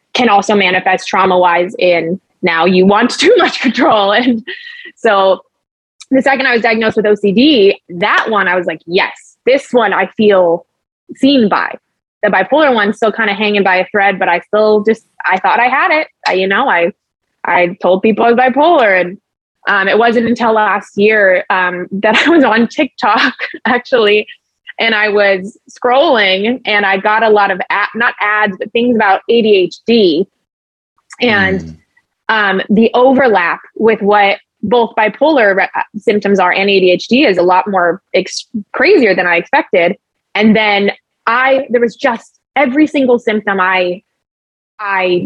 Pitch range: 190-245 Hz